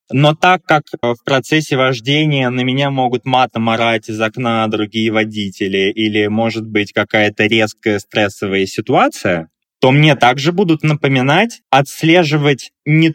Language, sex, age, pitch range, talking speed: Russian, male, 20-39, 115-165 Hz, 130 wpm